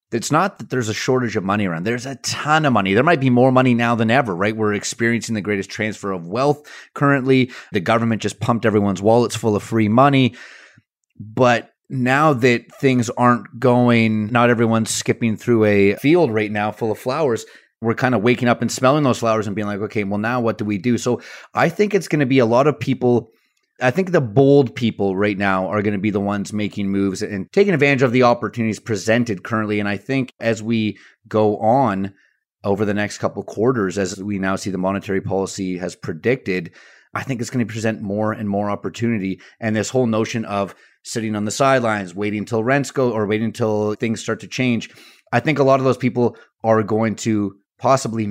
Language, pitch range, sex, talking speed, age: English, 105-125 Hz, male, 215 wpm, 30-49